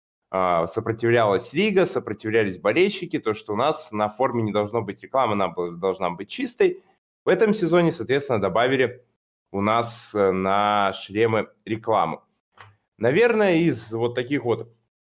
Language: Russian